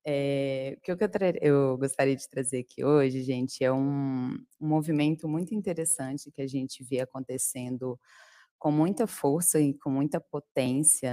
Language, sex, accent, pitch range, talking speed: Portuguese, female, Brazilian, 130-155 Hz, 150 wpm